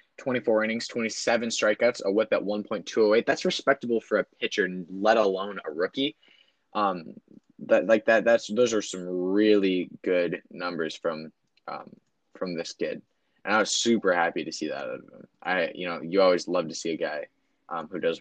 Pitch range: 100-140 Hz